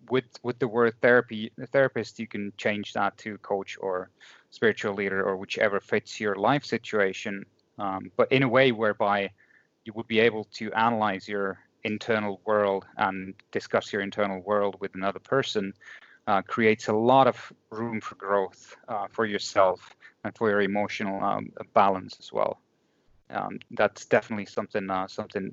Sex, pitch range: male, 105-135 Hz